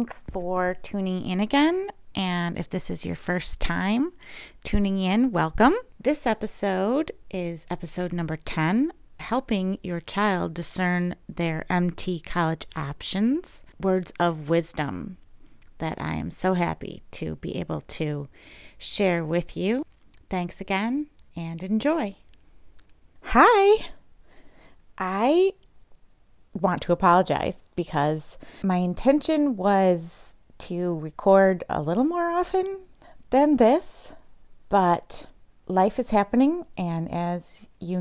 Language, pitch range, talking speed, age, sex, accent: English, 170-225 Hz, 115 wpm, 30-49, female, American